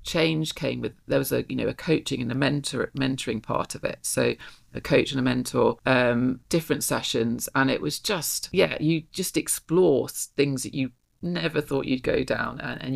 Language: English